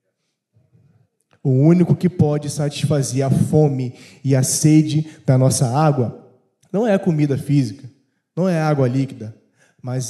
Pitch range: 130-170 Hz